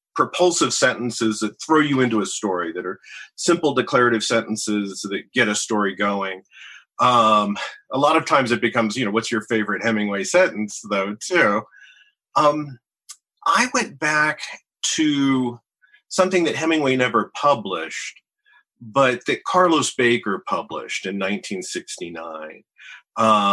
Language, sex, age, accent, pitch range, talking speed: English, male, 40-59, American, 105-150 Hz, 130 wpm